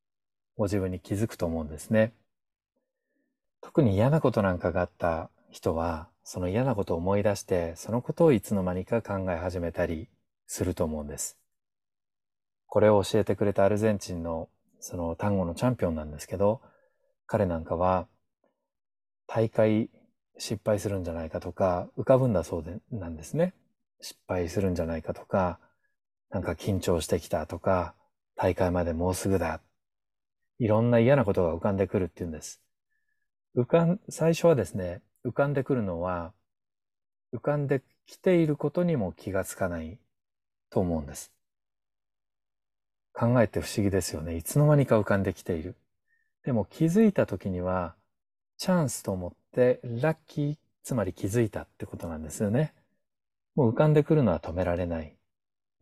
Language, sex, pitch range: Japanese, male, 90-125 Hz